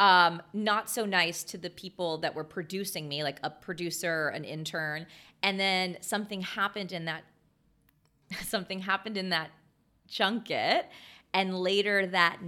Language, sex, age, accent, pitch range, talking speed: English, female, 30-49, American, 160-195 Hz, 145 wpm